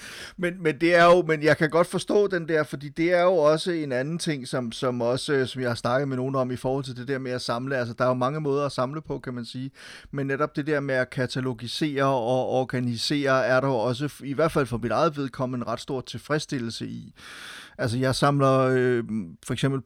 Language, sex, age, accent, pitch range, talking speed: Danish, male, 30-49, native, 125-150 Hz, 245 wpm